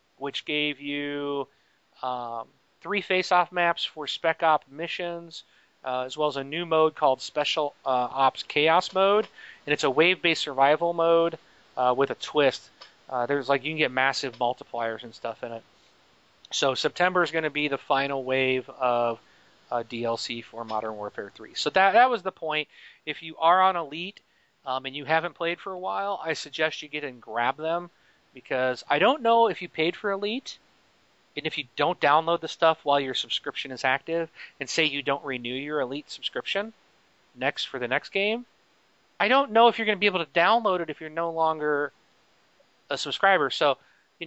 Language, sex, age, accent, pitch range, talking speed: English, male, 30-49, American, 130-175 Hz, 195 wpm